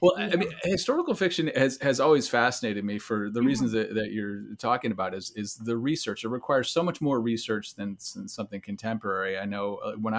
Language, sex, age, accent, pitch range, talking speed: English, male, 30-49, American, 110-135 Hz, 205 wpm